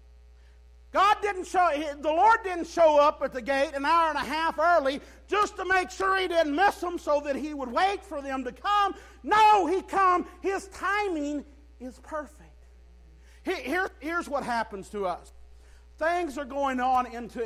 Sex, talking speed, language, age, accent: male, 180 wpm, English, 50-69, American